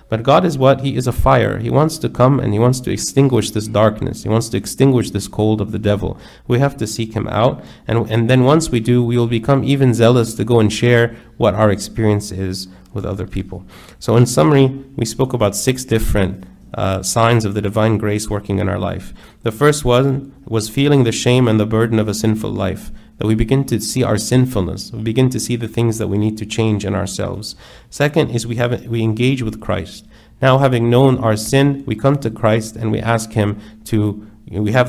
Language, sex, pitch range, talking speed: English, male, 105-125 Hz, 225 wpm